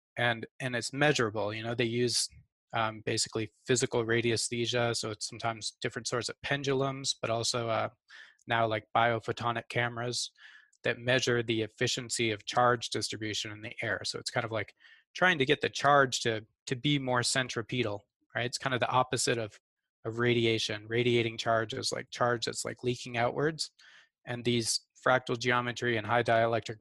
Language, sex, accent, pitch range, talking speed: English, male, American, 115-125 Hz, 170 wpm